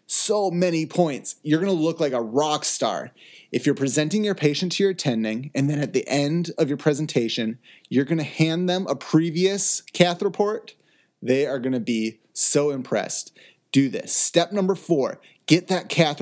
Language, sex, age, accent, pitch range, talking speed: English, male, 30-49, American, 125-165 Hz, 190 wpm